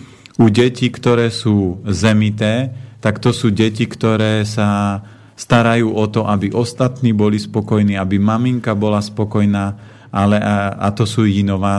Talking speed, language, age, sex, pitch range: 145 wpm, Slovak, 40-59, male, 100-115 Hz